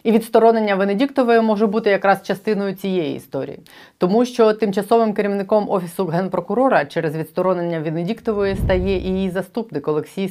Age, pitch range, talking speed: 30-49, 175-225 Hz, 135 wpm